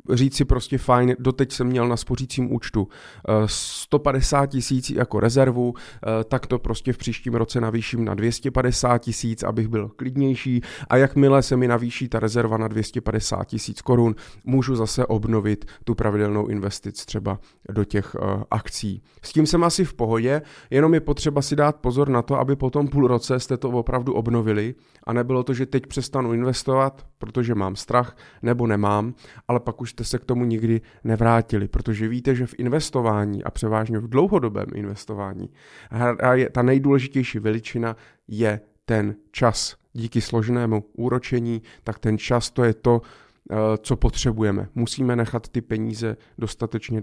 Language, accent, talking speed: Czech, native, 155 wpm